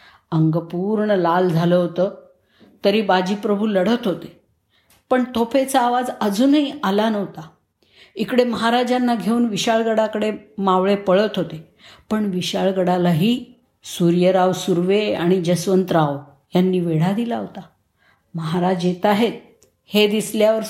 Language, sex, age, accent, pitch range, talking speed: Marathi, female, 50-69, native, 175-225 Hz, 110 wpm